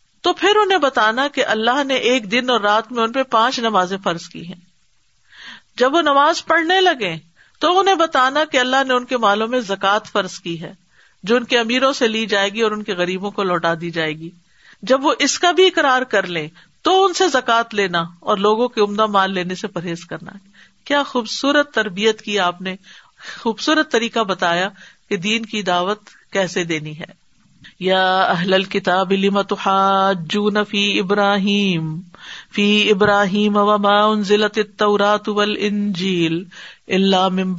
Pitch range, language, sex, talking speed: 190-250 Hz, Urdu, female, 165 wpm